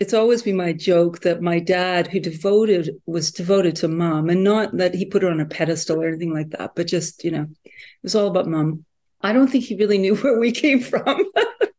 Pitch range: 170-220 Hz